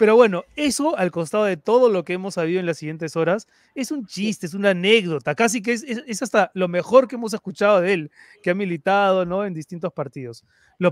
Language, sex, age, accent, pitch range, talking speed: Spanish, male, 30-49, Argentinian, 165-210 Hz, 230 wpm